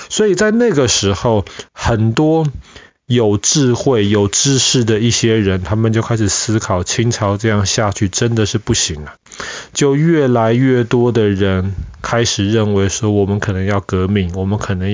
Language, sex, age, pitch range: Chinese, male, 20-39, 100-120 Hz